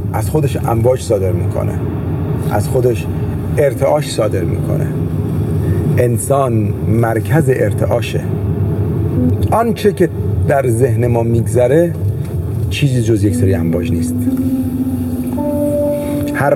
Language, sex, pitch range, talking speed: Persian, male, 100-130 Hz, 100 wpm